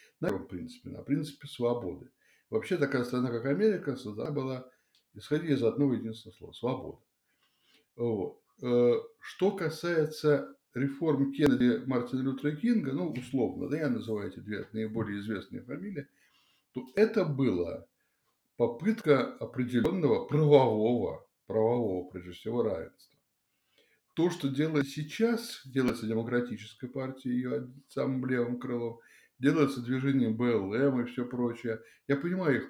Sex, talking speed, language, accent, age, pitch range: male, 120 wpm, Russian, native, 60-79, 120-150 Hz